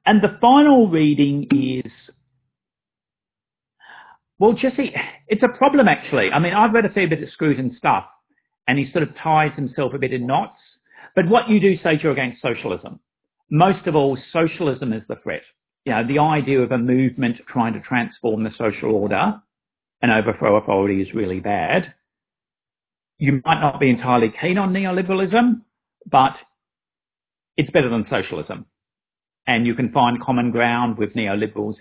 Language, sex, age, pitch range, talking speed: English, male, 50-69, 120-180 Hz, 165 wpm